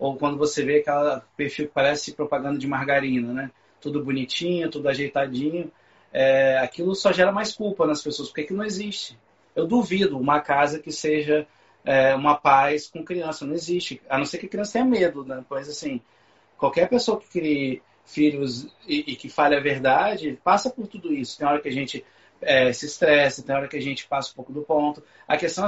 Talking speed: 200 wpm